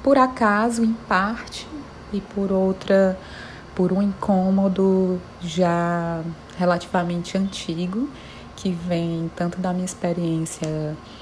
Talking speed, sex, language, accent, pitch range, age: 100 wpm, female, Portuguese, Brazilian, 165-195 Hz, 30-49